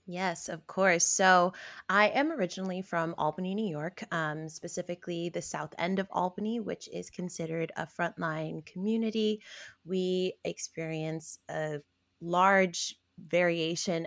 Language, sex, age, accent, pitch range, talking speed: English, female, 20-39, American, 155-185 Hz, 125 wpm